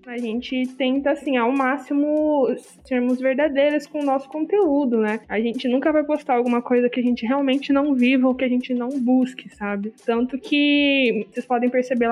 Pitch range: 225-265 Hz